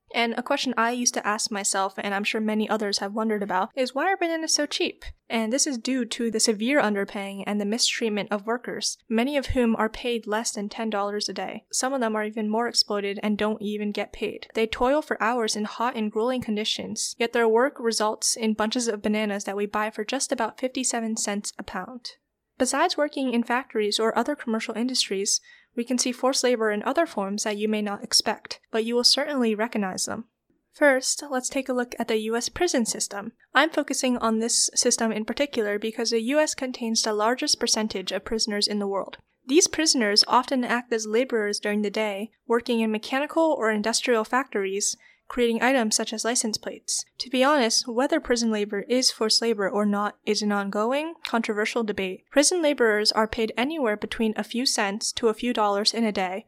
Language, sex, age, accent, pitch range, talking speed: English, female, 10-29, American, 210-250 Hz, 205 wpm